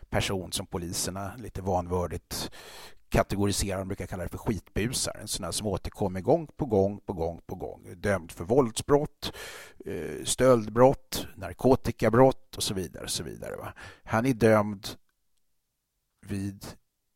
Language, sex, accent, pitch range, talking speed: Swedish, male, native, 90-115 Hz, 140 wpm